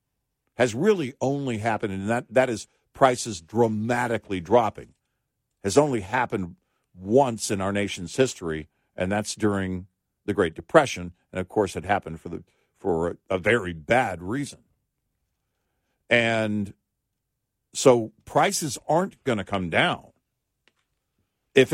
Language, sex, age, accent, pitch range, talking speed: English, male, 50-69, American, 100-130 Hz, 125 wpm